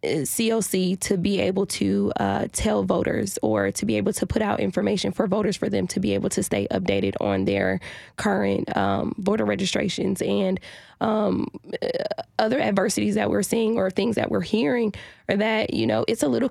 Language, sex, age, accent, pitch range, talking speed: English, female, 20-39, American, 180-220 Hz, 185 wpm